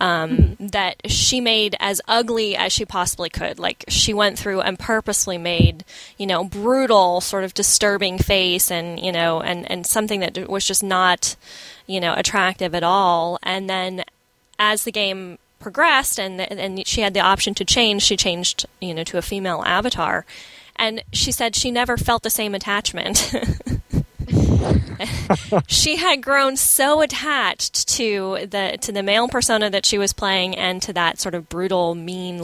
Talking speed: 170 wpm